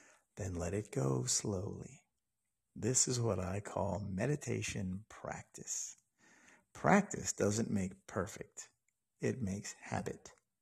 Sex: male